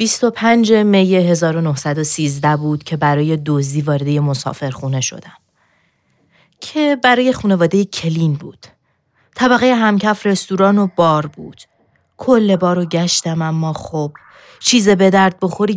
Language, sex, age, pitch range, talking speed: Persian, female, 30-49, 140-165 Hz, 125 wpm